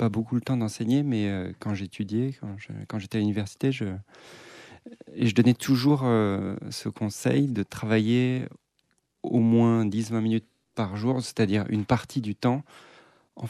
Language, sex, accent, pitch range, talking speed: French, male, French, 105-120 Hz, 155 wpm